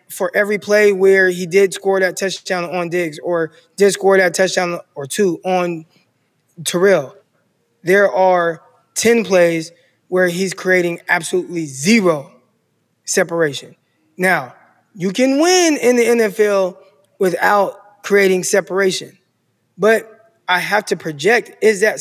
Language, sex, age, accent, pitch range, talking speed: English, male, 20-39, American, 170-215 Hz, 130 wpm